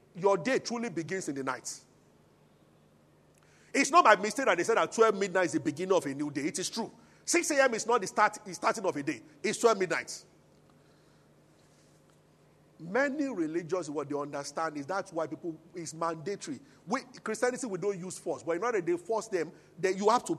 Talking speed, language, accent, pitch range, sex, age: 200 wpm, English, Nigerian, 185-260 Hz, male, 40-59